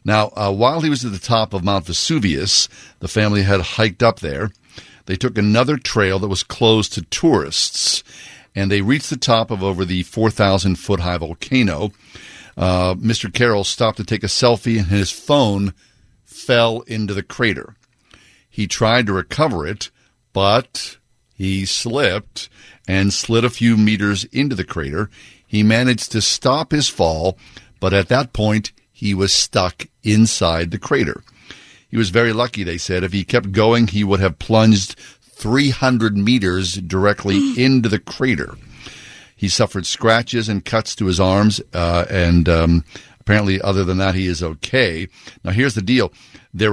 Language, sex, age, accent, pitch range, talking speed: English, male, 50-69, American, 95-115 Hz, 160 wpm